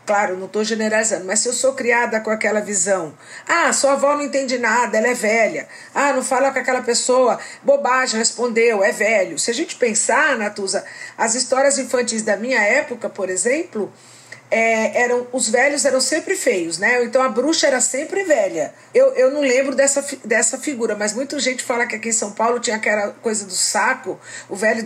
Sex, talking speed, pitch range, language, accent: female, 190 wpm, 220-280 Hz, Portuguese, Brazilian